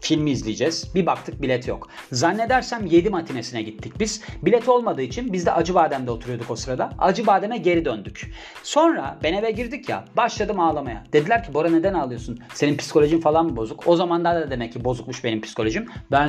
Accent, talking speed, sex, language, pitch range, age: native, 190 wpm, male, Turkish, 130-170 Hz, 40-59